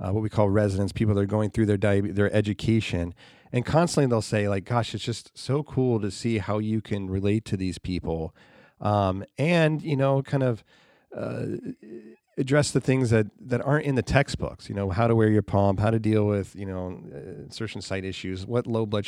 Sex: male